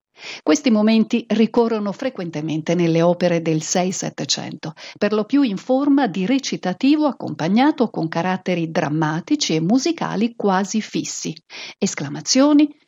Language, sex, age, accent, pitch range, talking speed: Italian, female, 50-69, native, 180-250 Hz, 110 wpm